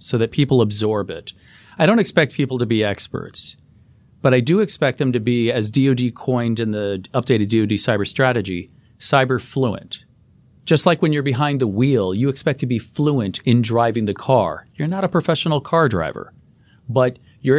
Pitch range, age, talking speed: 105-135 Hz, 40-59, 185 wpm